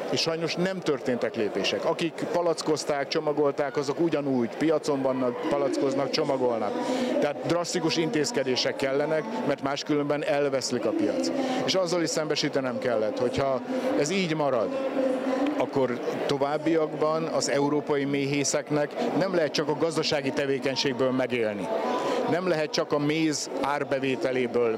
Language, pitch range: Hungarian, 125-155 Hz